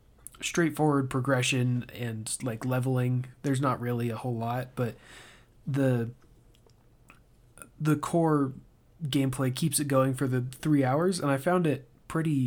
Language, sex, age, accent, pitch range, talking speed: English, male, 20-39, American, 120-140 Hz, 135 wpm